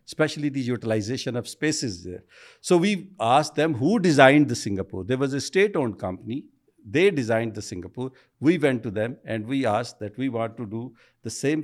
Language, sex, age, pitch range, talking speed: Urdu, male, 60-79, 110-140 Hz, 190 wpm